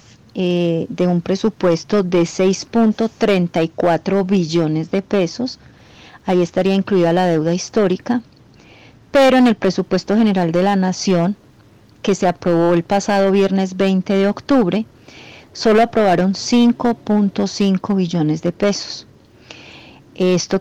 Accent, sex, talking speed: Colombian, female, 115 wpm